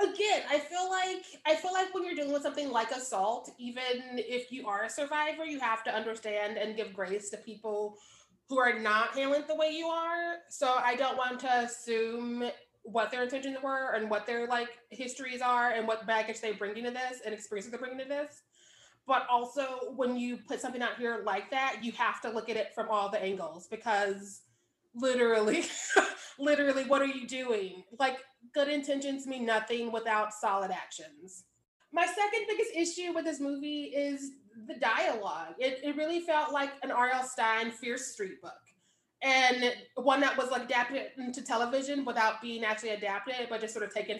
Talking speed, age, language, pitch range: 190 wpm, 20-39, English, 225-290 Hz